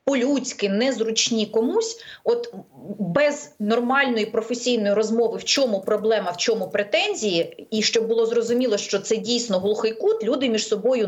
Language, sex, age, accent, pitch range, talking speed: Ukrainian, female, 30-49, native, 205-255 Hz, 140 wpm